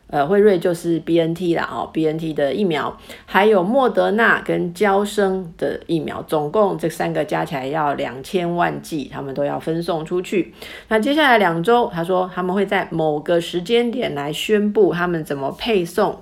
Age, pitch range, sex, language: 50-69, 155-210 Hz, female, Chinese